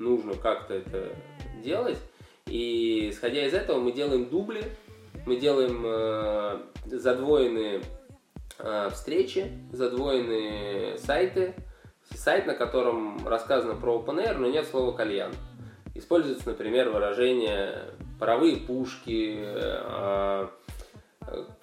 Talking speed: 95 wpm